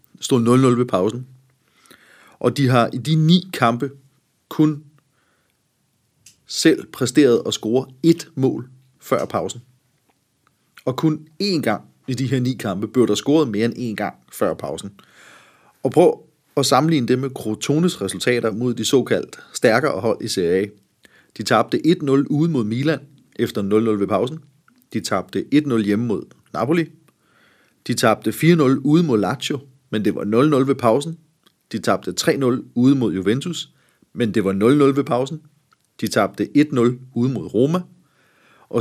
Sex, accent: male, native